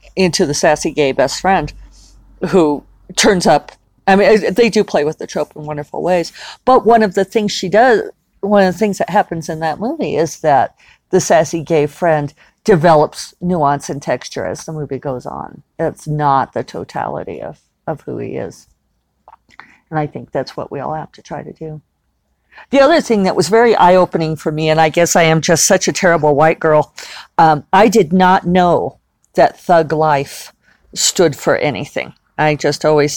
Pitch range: 145-190 Hz